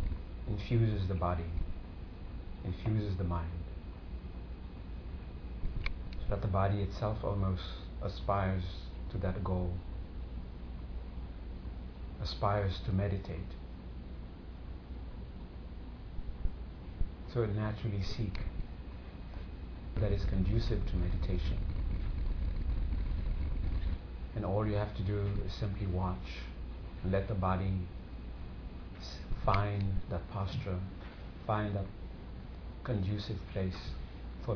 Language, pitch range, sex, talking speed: English, 70-100 Hz, male, 85 wpm